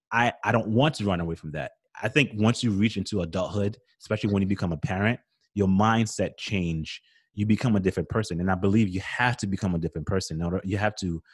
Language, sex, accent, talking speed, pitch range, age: English, male, American, 240 wpm, 90-110 Hz, 20-39